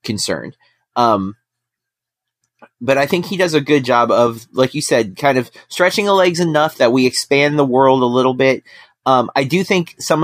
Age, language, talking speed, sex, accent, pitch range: 30-49, English, 195 wpm, male, American, 115-145 Hz